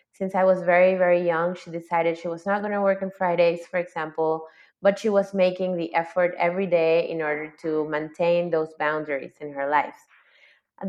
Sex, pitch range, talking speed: female, 170-200 Hz, 200 wpm